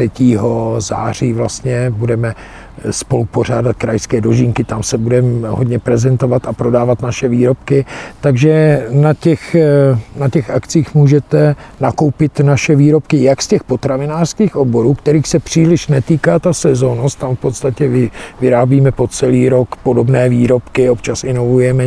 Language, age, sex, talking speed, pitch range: Czech, 50-69, male, 130 wpm, 120-140 Hz